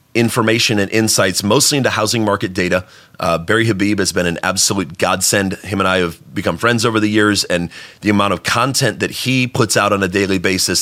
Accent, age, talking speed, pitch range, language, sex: American, 30-49, 210 wpm, 100-120 Hz, English, male